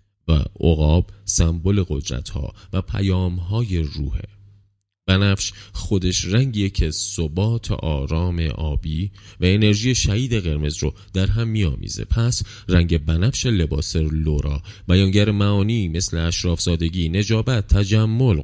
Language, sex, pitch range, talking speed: Persian, male, 85-105 Hz, 115 wpm